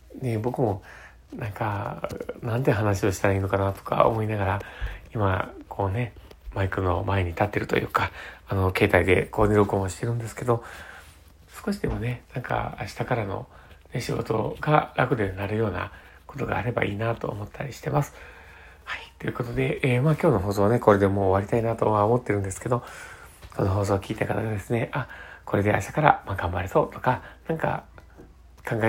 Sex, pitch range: male, 95-120 Hz